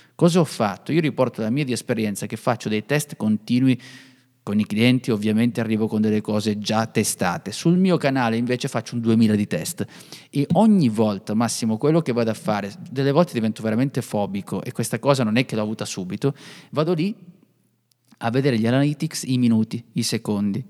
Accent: native